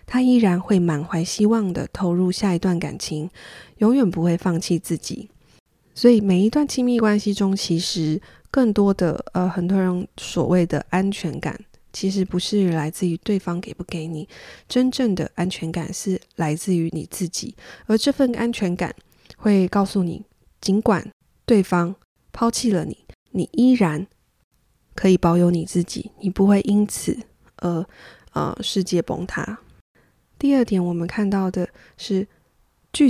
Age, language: 20-39, Chinese